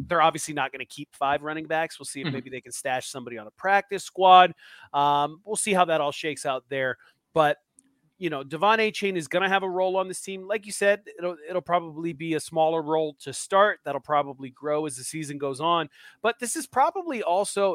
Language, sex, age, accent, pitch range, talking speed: English, male, 30-49, American, 150-190 Hz, 235 wpm